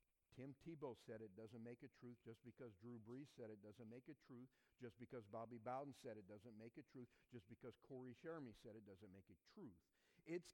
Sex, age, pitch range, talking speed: male, 50-69, 115-175 Hz, 220 wpm